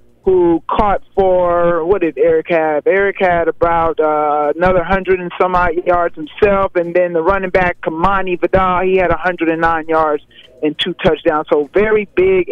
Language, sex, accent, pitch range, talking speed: English, male, American, 165-195 Hz, 170 wpm